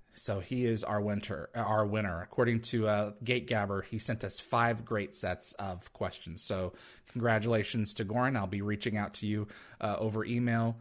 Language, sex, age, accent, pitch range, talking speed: English, male, 30-49, American, 105-130 Hz, 185 wpm